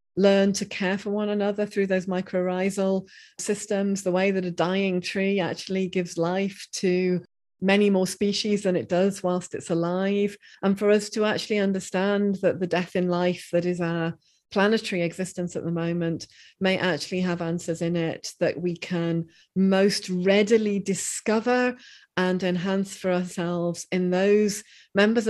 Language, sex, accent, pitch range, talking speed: English, female, British, 170-195 Hz, 160 wpm